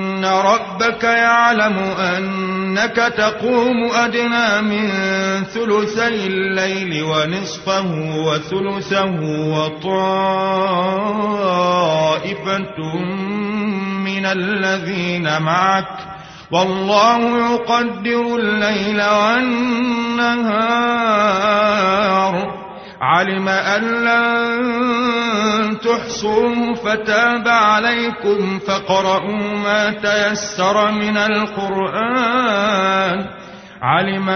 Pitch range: 185-220 Hz